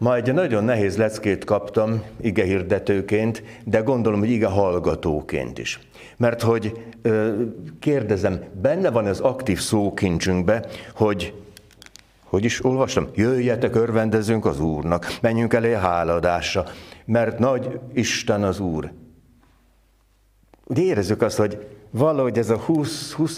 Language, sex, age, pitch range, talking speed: Hungarian, male, 60-79, 105-130 Hz, 125 wpm